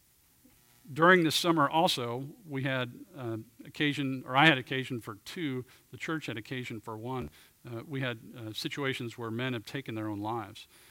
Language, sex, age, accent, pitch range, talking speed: English, male, 50-69, American, 120-145 Hz, 175 wpm